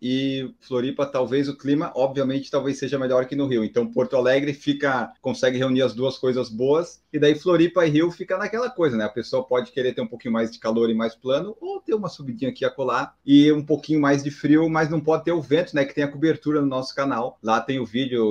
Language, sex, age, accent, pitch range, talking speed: Portuguese, male, 30-49, Brazilian, 125-160 Hz, 245 wpm